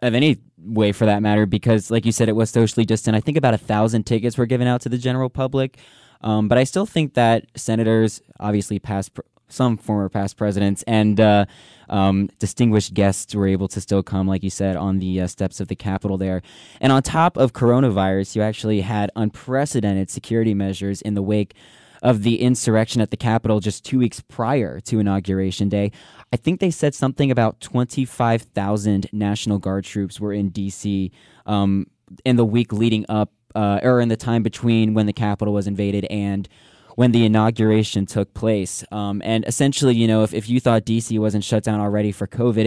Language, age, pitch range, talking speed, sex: English, 10-29, 100-120 Hz, 195 wpm, male